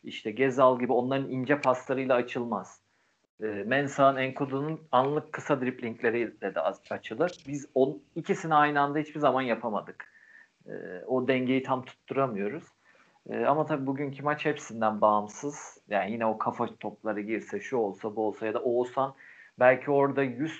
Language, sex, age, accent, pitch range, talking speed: Turkish, male, 40-59, native, 115-140 Hz, 155 wpm